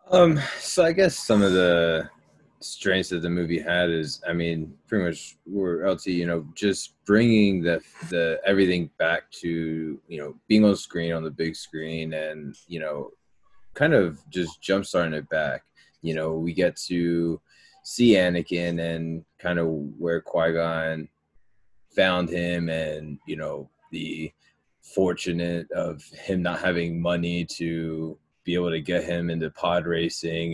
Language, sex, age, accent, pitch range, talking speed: English, male, 20-39, American, 80-90 Hz, 155 wpm